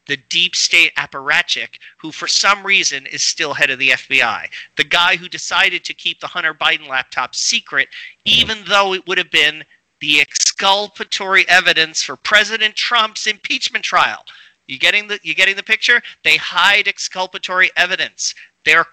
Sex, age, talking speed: male, 40-59, 160 wpm